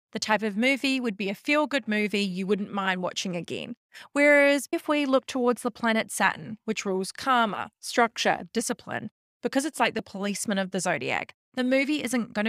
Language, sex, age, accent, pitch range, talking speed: English, female, 30-49, Australian, 205-280 Hz, 185 wpm